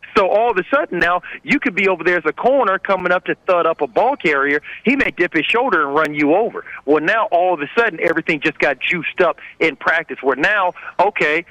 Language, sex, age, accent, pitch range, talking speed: English, male, 40-59, American, 160-210 Hz, 245 wpm